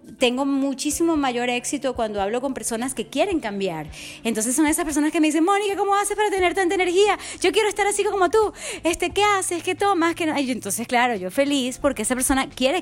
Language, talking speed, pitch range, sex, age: English, 215 wpm, 230-315 Hz, female, 30-49